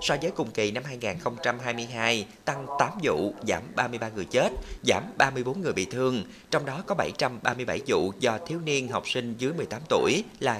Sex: male